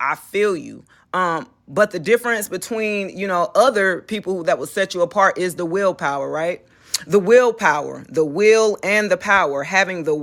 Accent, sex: American, female